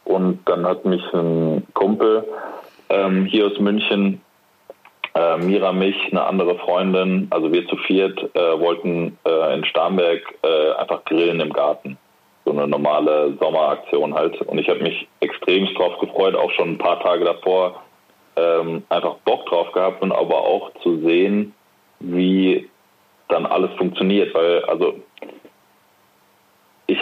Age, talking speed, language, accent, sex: 20-39, 145 wpm, German, German, male